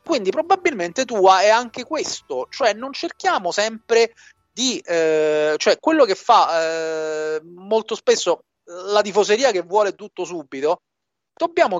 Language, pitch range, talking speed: Italian, 175-275 Hz, 130 wpm